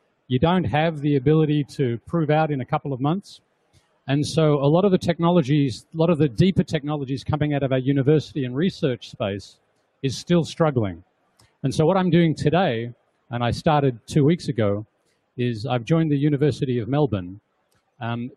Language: English